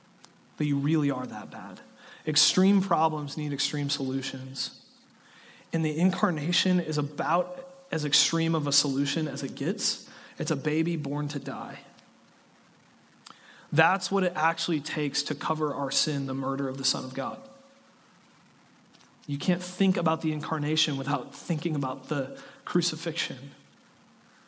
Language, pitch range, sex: English, 160-195 Hz, male